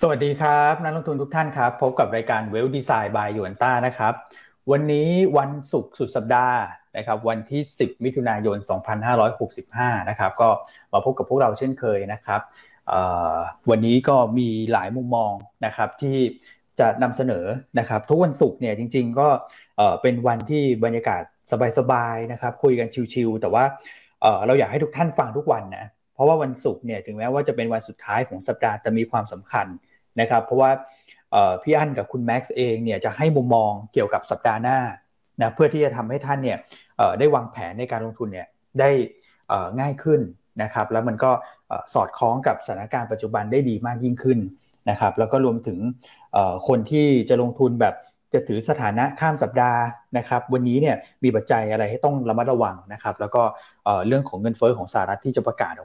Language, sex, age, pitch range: Thai, male, 20-39, 110-135 Hz